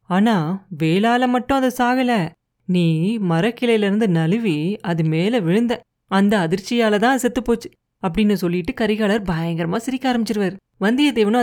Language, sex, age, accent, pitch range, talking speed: Tamil, female, 30-49, native, 175-230 Hz, 110 wpm